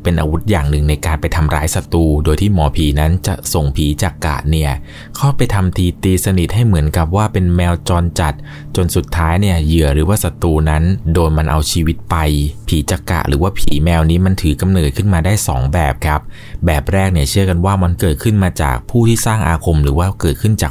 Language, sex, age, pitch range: Thai, male, 20-39, 75-95 Hz